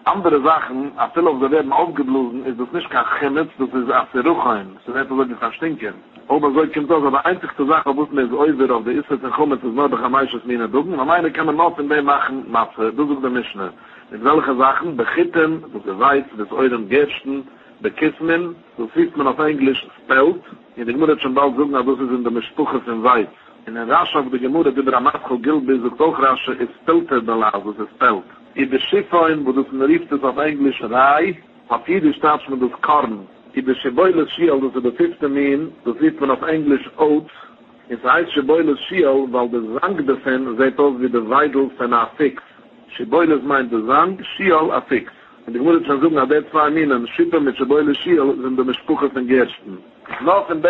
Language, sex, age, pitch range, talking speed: English, male, 60-79, 130-155 Hz, 135 wpm